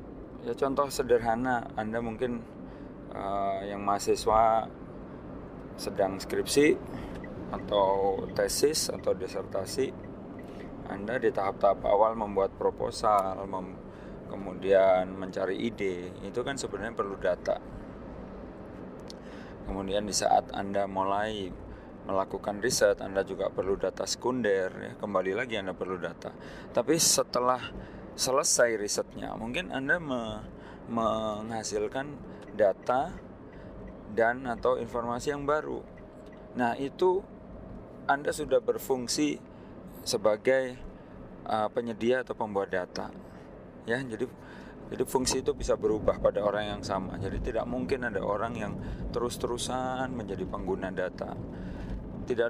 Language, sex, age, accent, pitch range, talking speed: Indonesian, male, 20-39, native, 100-135 Hz, 105 wpm